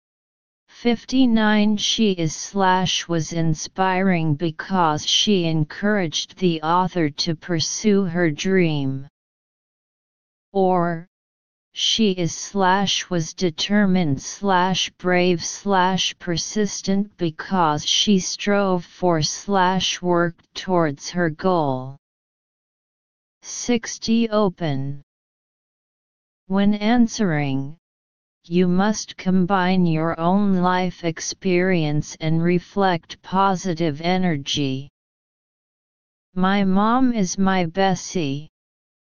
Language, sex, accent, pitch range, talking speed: English, female, American, 165-195 Hz, 85 wpm